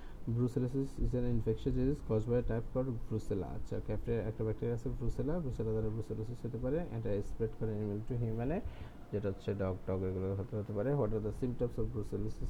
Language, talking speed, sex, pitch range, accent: Bengali, 55 wpm, male, 105-130 Hz, native